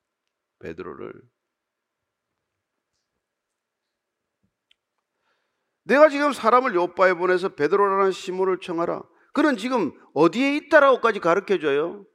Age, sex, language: 40-59, male, Korean